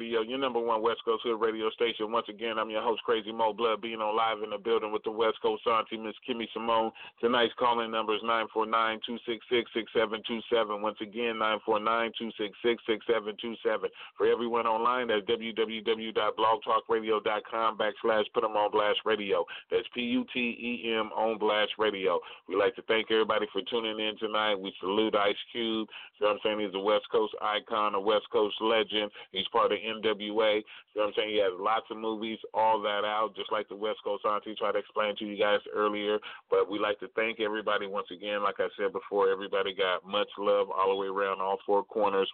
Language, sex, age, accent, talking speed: English, male, 30-49, American, 200 wpm